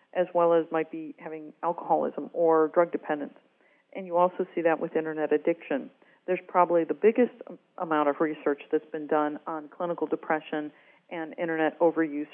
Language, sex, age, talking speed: English, female, 50-69, 165 wpm